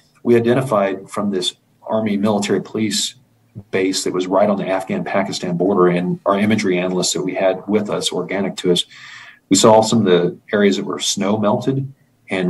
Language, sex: English, male